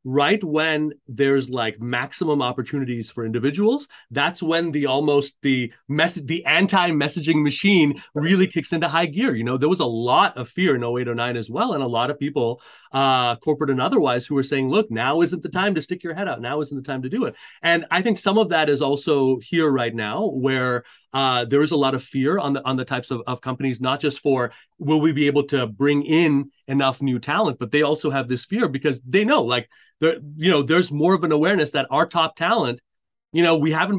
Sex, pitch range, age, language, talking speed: male, 130-165 Hz, 30-49, English, 225 wpm